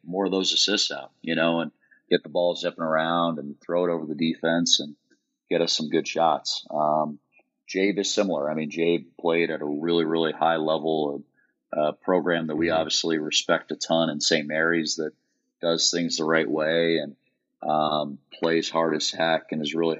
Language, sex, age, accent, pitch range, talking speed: English, male, 40-59, American, 80-85 Hz, 200 wpm